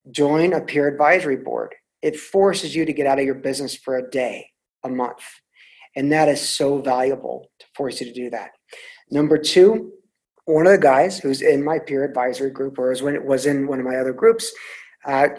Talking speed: 205 wpm